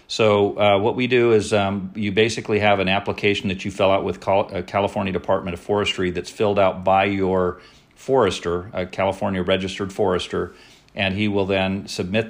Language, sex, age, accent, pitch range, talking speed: English, male, 40-59, American, 90-105 Hz, 180 wpm